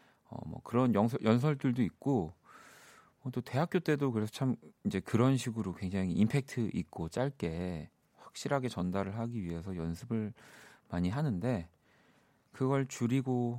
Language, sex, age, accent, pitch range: Korean, male, 40-59, native, 85-125 Hz